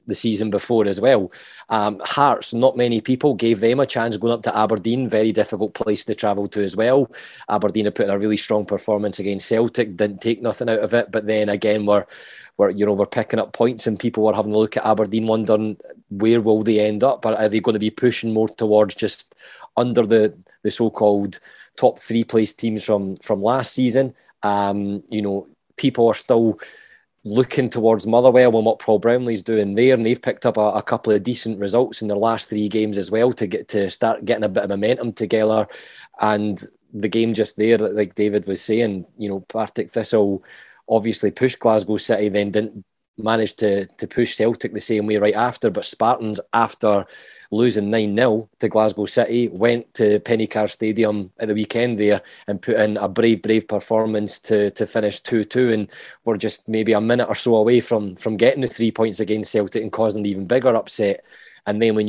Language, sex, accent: English, male, British